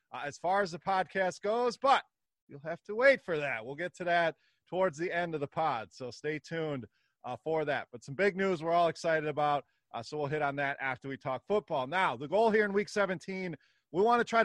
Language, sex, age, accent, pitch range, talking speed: English, male, 30-49, American, 145-190 Hz, 245 wpm